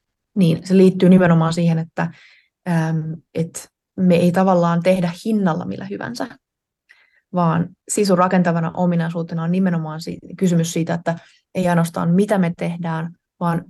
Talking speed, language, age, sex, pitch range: 125 wpm, Finnish, 20-39, female, 170-190 Hz